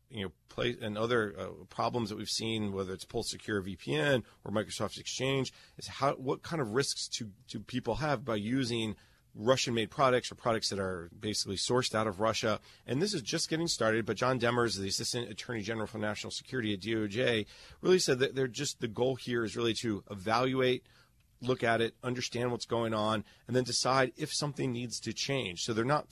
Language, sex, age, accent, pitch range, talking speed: English, male, 30-49, American, 110-130 Hz, 200 wpm